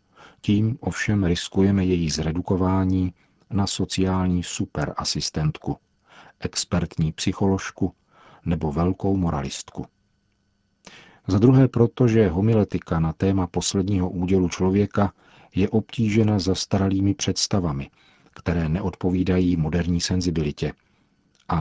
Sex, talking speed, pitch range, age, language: male, 90 wpm, 85-100 Hz, 40-59, Czech